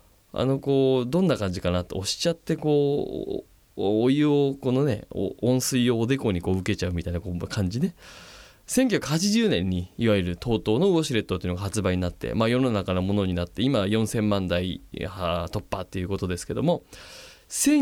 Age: 20-39